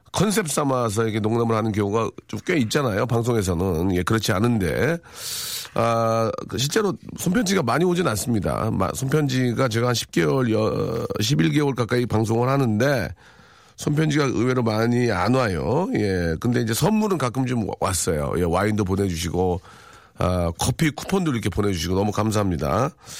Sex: male